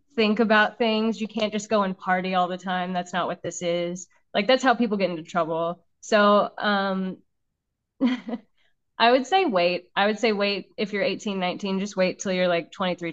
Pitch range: 185-220 Hz